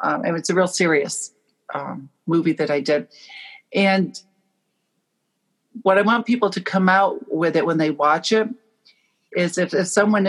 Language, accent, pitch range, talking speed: English, American, 160-200 Hz, 165 wpm